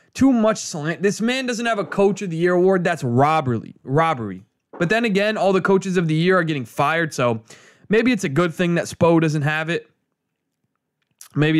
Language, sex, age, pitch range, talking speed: English, male, 20-39, 150-190 Hz, 205 wpm